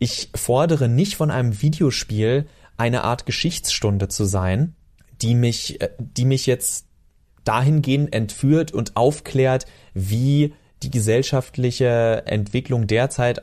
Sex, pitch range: male, 110-150 Hz